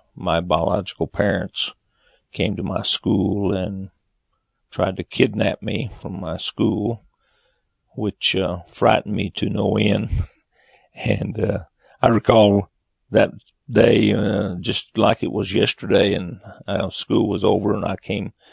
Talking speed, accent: 135 wpm, American